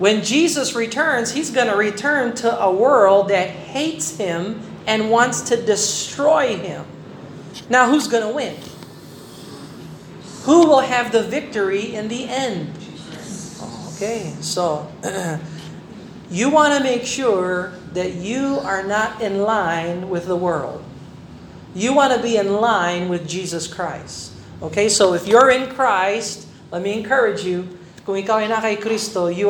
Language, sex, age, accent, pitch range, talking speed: Filipino, male, 40-59, American, 180-235 Hz, 145 wpm